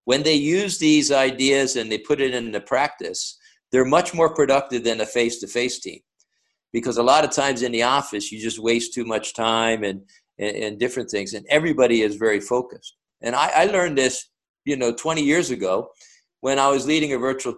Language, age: English, 50-69